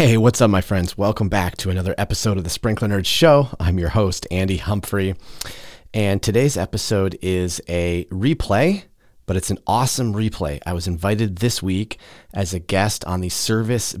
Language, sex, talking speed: English, male, 180 wpm